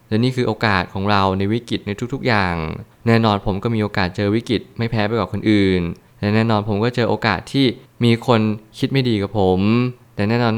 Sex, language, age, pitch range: male, Thai, 20-39, 100-115 Hz